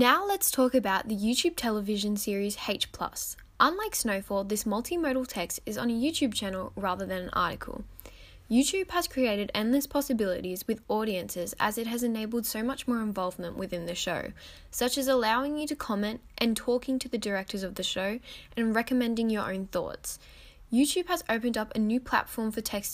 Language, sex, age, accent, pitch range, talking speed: English, female, 10-29, Australian, 205-255 Hz, 180 wpm